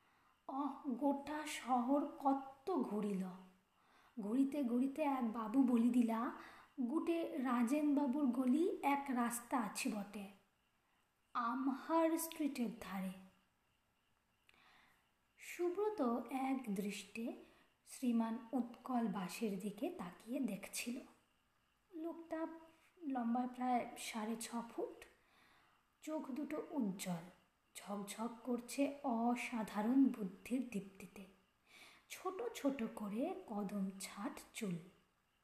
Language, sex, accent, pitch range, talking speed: Bengali, female, native, 215-285 Hz, 85 wpm